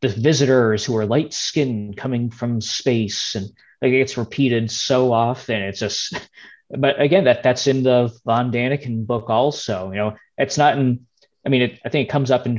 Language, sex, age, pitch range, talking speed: English, male, 20-39, 105-125 Hz, 190 wpm